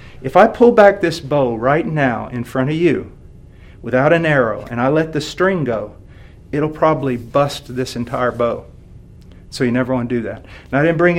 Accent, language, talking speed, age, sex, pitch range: American, English, 205 wpm, 50-69, male, 120-155 Hz